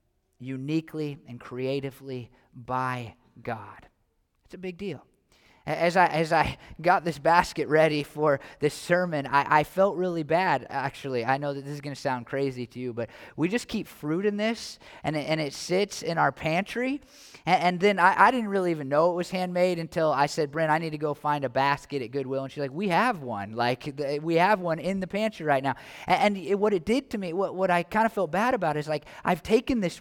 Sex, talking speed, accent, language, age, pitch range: male, 230 wpm, American, English, 20-39, 155-215 Hz